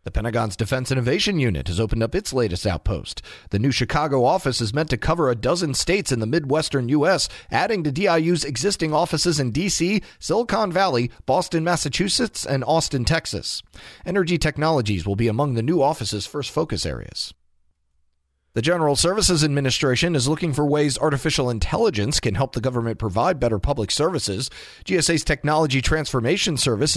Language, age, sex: English, 40-59, male